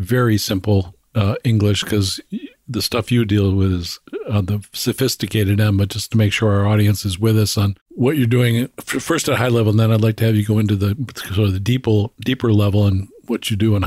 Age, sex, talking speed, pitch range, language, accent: 50-69, male, 240 wpm, 100-120 Hz, English, American